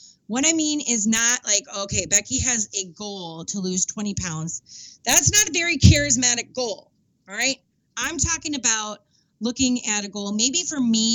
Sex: female